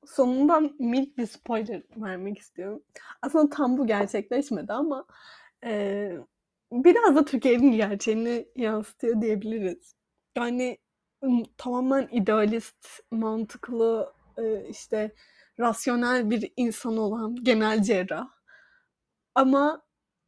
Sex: female